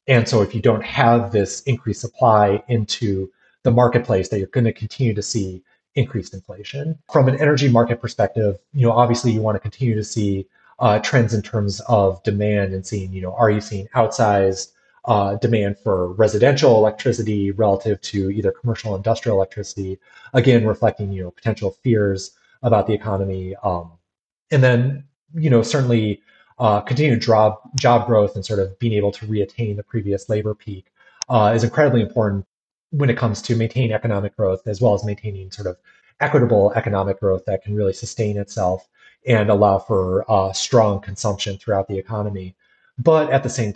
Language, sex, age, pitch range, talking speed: English, male, 30-49, 100-120 Hz, 175 wpm